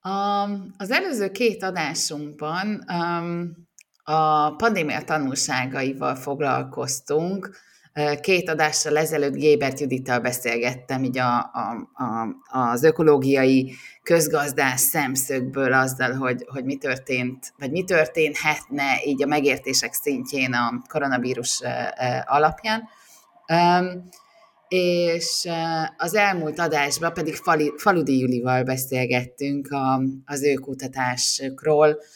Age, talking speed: 30-49, 85 wpm